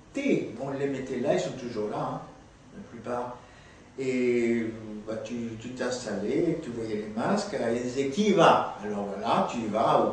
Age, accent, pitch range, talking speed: 60-79, French, 135-215 Hz, 180 wpm